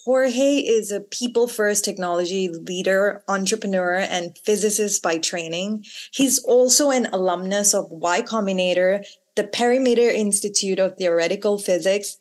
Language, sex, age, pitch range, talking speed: English, female, 20-39, 180-230 Hz, 120 wpm